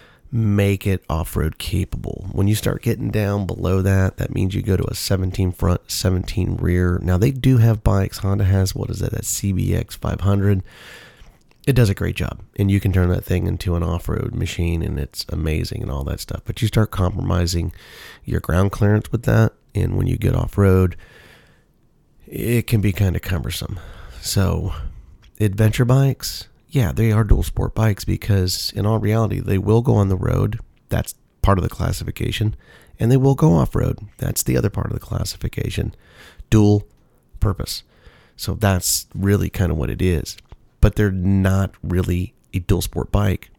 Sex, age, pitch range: male, 30-49, 90-110 Hz